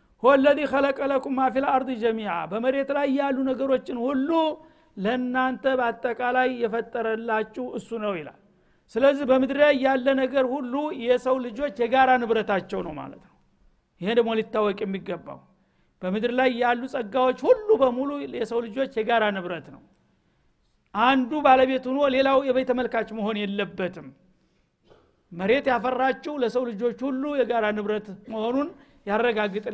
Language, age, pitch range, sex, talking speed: Amharic, 60-79, 215-265 Hz, male, 55 wpm